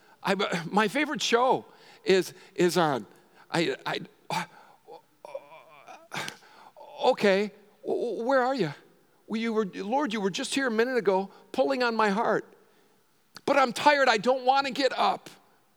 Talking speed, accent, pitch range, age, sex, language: 150 wpm, American, 170-215 Hz, 50-69, male, English